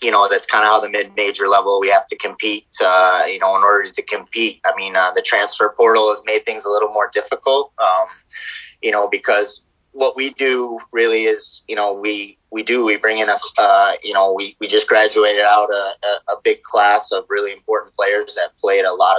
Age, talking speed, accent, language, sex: 30-49, 220 wpm, American, English, male